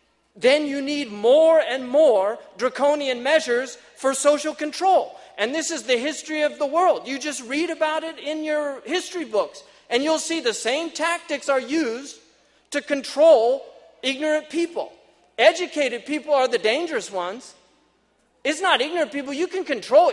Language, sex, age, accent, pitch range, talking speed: English, male, 40-59, American, 255-320 Hz, 160 wpm